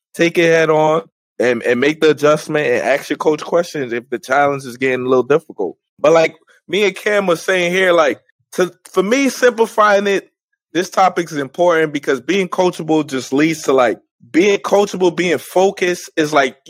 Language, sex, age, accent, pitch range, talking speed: English, male, 20-39, American, 145-185 Hz, 190 wpm